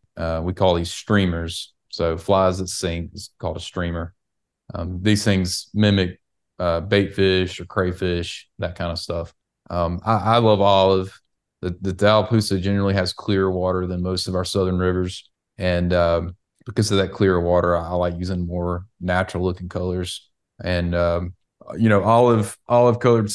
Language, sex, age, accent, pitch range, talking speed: English, male, 30-49, American, 90-100 Hz, 170 wpm